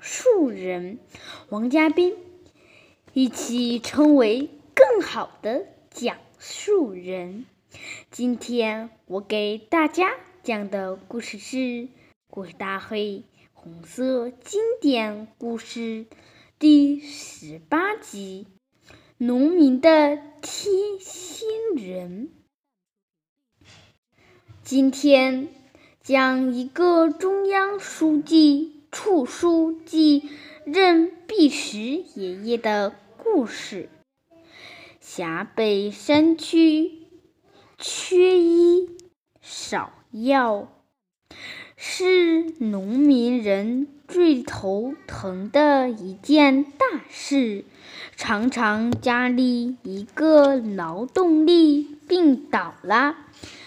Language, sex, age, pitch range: Chinese, female, 10-29, 220-325 Hz